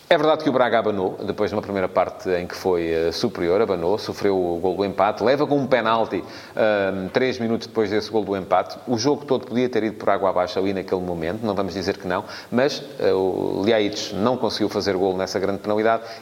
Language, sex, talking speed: Portuguese, male, 225 wpm